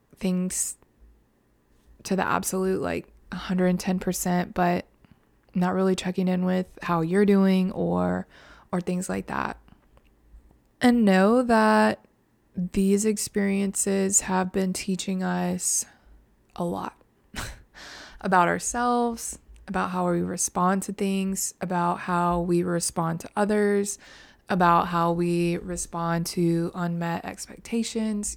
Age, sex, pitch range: 20-39, female, 170-200 Hz